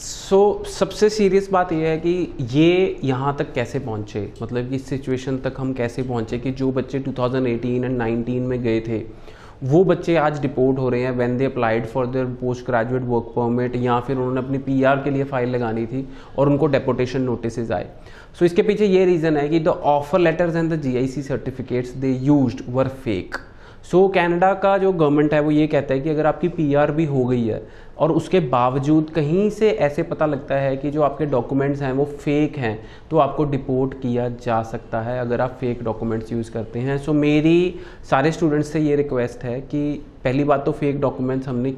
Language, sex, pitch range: Punjabi, male, 125-150 Hz